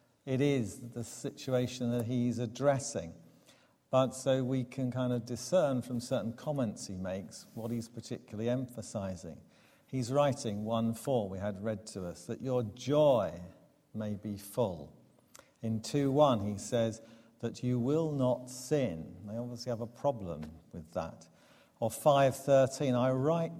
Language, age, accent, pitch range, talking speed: English, 50-69, British, 110-135 Hz, 145 wpm